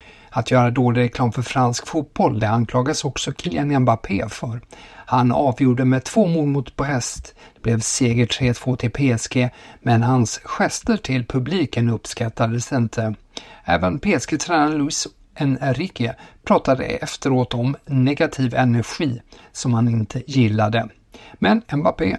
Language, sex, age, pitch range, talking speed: Swedish, male, 60-79, 120-145 Hz, 130 wpm